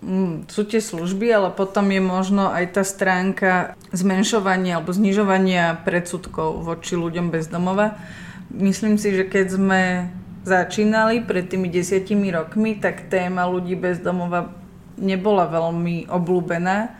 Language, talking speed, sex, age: Slovak, 125 wpm, female, 30-49